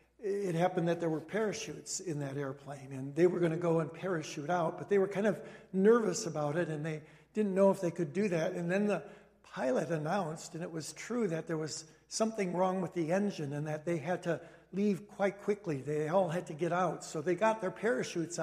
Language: English